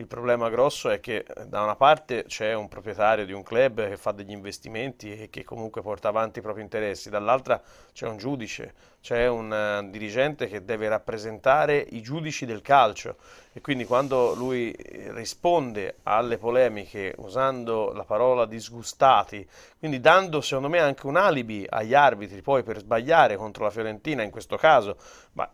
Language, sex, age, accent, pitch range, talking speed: Italian, male, 30-49, native, 110-135 Hz, 165 wpm